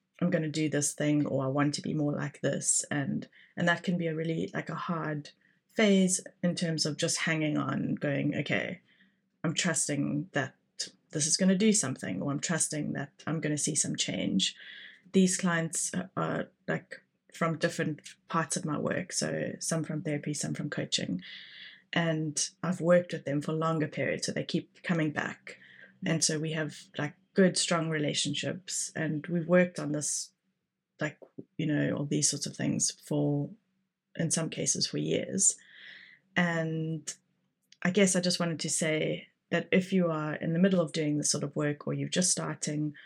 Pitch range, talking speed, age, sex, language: 150-175 Hz, 185 wpm, 20-39, female, English